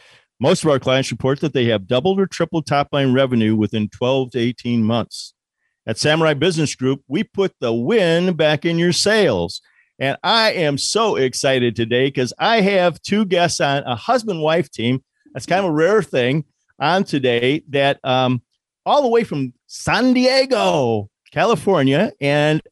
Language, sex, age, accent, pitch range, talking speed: English, male, 50-69, American, 120-170 Hz, 170 wpm